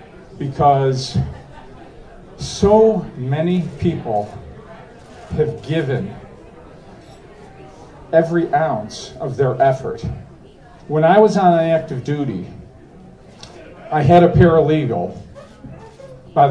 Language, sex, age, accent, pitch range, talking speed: English, male, 40-59, American, 130-160 Hz, 80 wpm